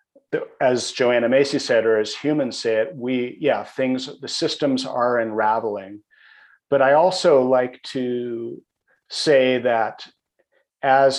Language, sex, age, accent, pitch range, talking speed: English, male, 40-59, American, 110-130 Hz, 130 wpm